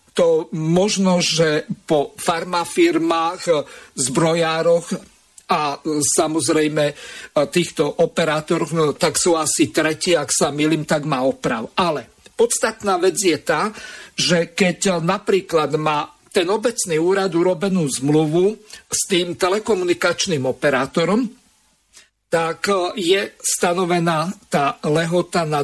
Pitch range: 155-195 Hz